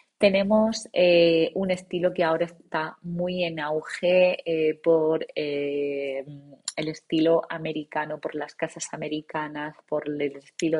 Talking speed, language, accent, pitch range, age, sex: 130 wpm, Spanish, Spanish, 140-165 Hz, 20-39, female